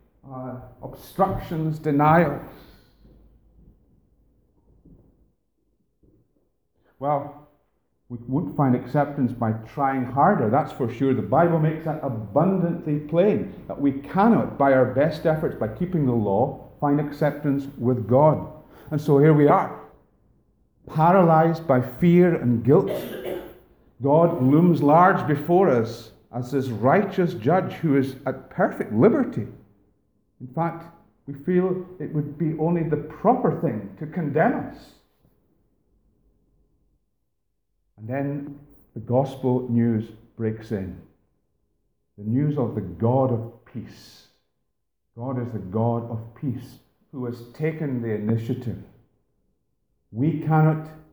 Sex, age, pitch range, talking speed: male, 50-69, 115-155 Hz, 120 wpm